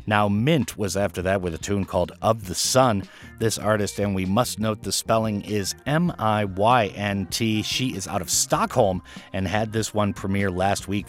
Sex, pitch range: male, 95-115 Hz